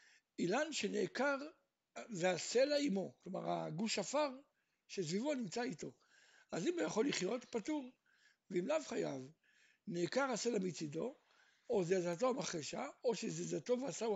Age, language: 60-79, Hebrew